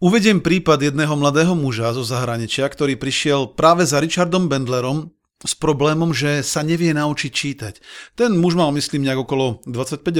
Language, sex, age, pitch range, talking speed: Slovak, male, 40-59, 130-160 Hz, 160 wpm